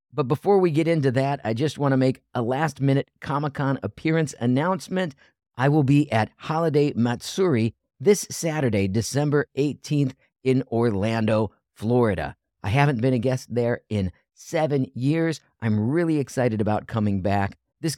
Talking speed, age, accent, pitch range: 150 wpm, 50-69, American, 100-140 Hz